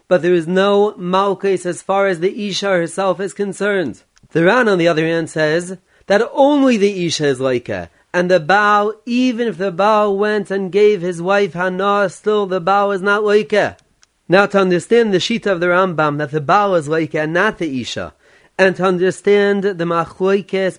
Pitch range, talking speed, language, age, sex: 180-205 Hz, 195 wpm, English, 30-49, male